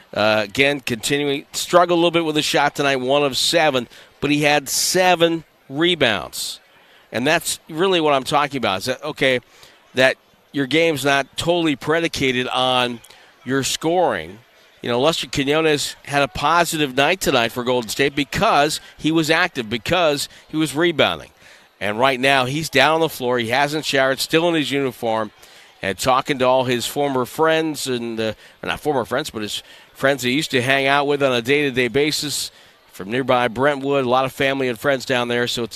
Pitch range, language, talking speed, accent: 120-150 Hz, English, 185 wpm, American